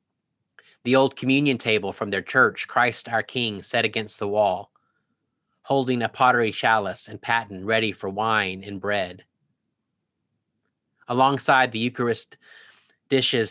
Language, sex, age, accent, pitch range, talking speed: English, male, 30-49, American, 105-125 Hz, 130 wpm